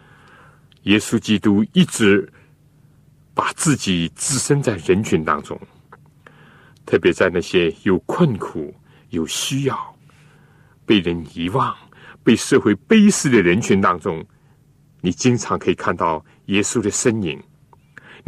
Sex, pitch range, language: male, 105-150 Hz, Chinese